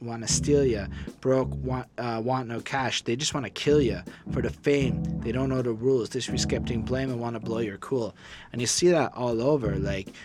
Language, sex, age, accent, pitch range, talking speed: English, male, 20-39, American, 115-140 Hz, 235 wpm